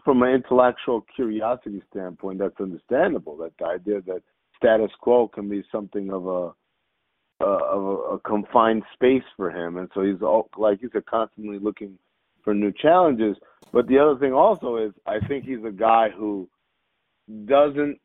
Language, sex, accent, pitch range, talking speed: English, male, American, 105-125 Hz, 165 wpm